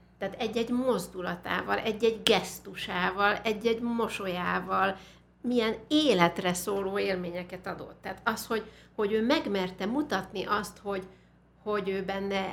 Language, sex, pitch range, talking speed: Hungarian, female, 185-225 Hz, 115 wpm